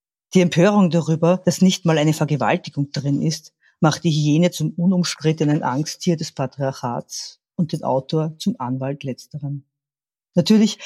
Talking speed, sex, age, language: 140 wpm, female, 50-69, German